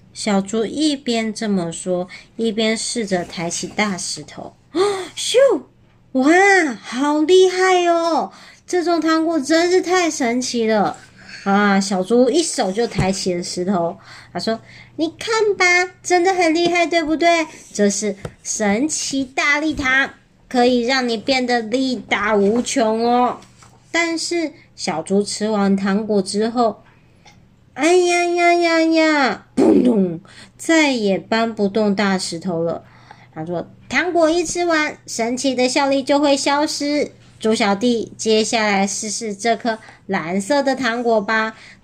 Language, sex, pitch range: Chinese, male, 205-315 Hz